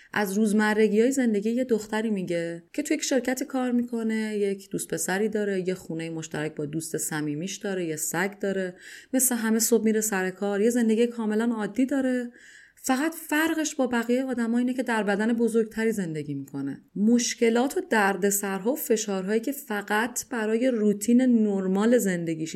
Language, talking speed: Persian, 170 wpm